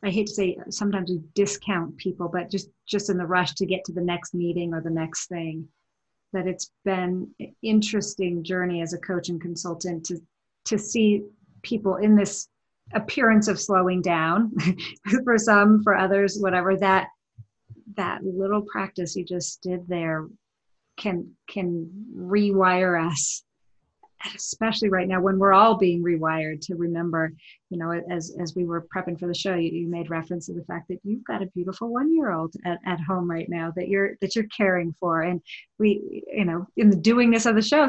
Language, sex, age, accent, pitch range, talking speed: English, female, 40-59, American, 175-205 Hz, 185 wpm